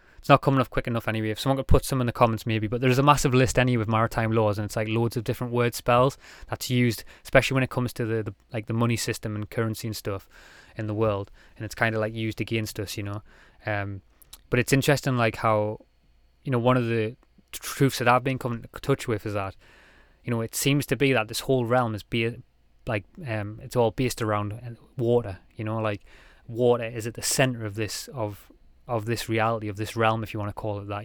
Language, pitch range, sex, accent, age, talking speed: English, 110-120 Hz, male, British, 20-39, 245 wpm